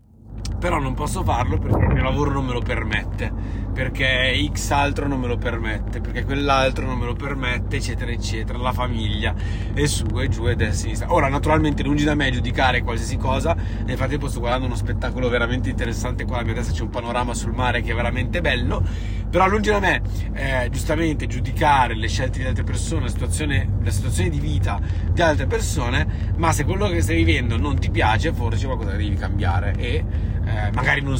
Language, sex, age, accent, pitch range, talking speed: Italian, male, 30-49, native, 85-105 Hz, 190 wpm